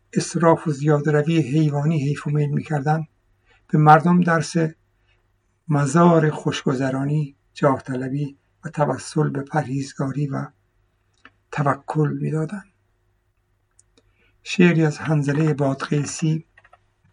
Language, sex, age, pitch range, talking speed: Persian, male, 60-79, 100-160 Hz, 95 wpm